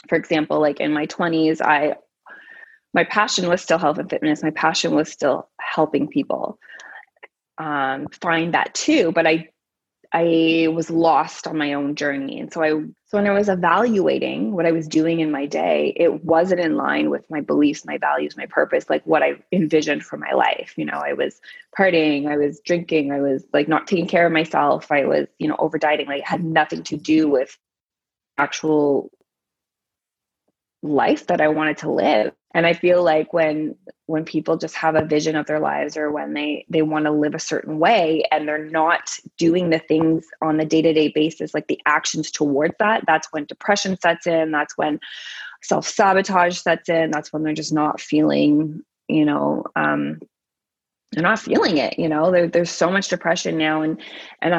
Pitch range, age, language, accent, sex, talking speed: 150-170 Hz, 20-39, English, American, female, 190 wpm